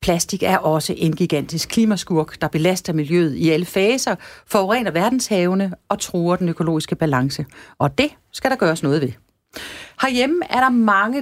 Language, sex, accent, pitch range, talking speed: Danish, female, native, 160-230 Hz, 160 wpm